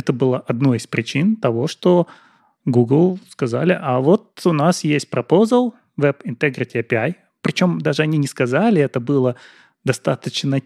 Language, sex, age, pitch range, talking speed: Russian, male, 30-49, 125-165 Hz, 145 wpm